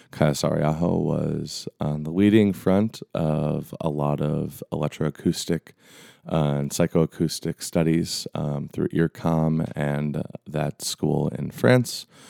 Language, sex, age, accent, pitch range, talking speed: English, male, 20-39, American, 75-85 Hz, 120 wpm